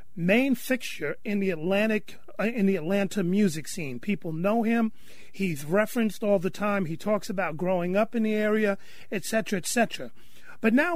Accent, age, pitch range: American, 40-59, 185-220 Hz